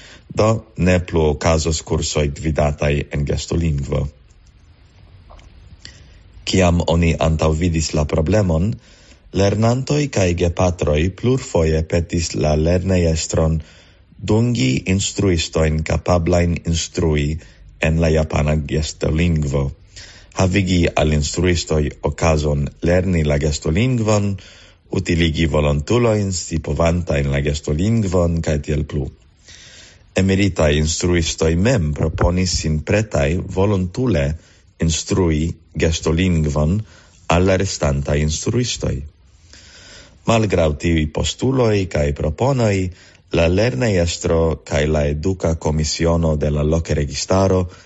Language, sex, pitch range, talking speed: English, male, 80-95 Hz, 90 wpm